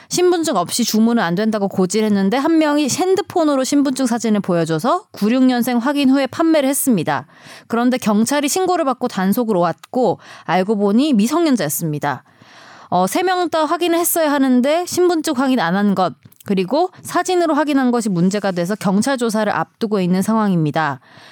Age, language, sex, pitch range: 20-39, Korean, female, 190-270 Hz